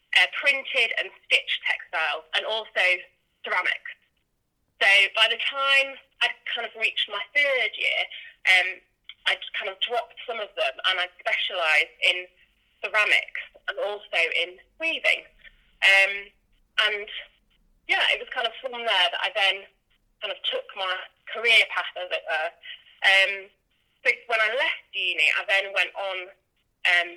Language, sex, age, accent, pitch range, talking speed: English, female, 20-39, British, 200-300 Hz, 155 wpm